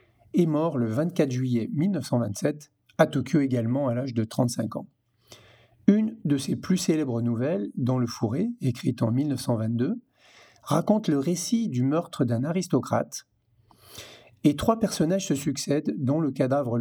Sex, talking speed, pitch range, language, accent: male, 145 wpm, 120-165 Hz, French, French